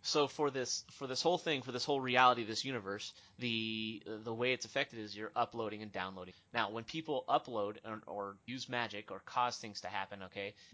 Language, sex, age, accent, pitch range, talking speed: English, male, 30-49, American, 110-140 Hz, 210 wpm